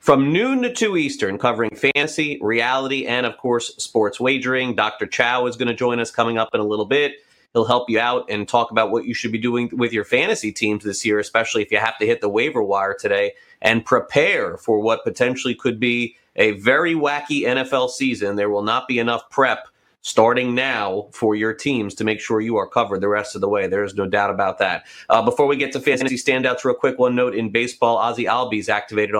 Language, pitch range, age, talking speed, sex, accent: English, 105-140 Hz, 30-49, 225 wpm, male, American